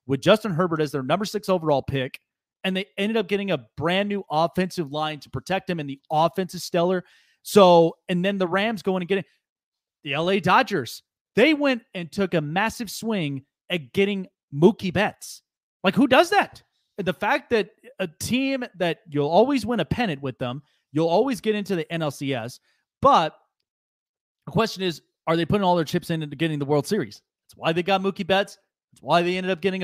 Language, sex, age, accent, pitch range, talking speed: English, male, 30-49, American, 150-200 Hz, 200 wpm